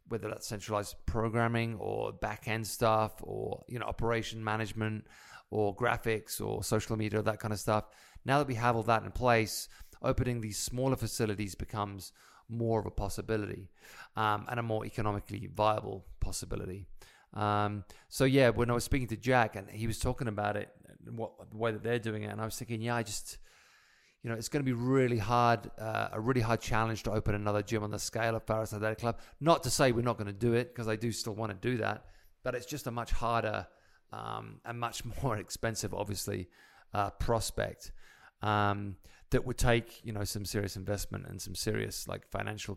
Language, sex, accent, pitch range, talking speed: English, male, British, 105-120 Hz, 205 wpm